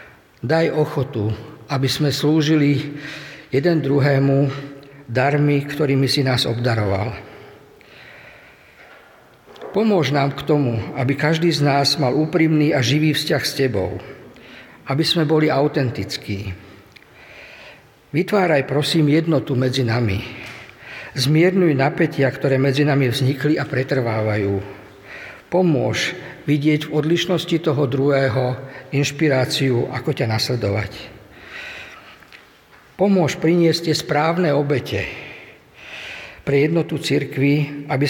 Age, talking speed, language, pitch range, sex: 50-69, 100 wpm, Slovak, 130-155 Hz, male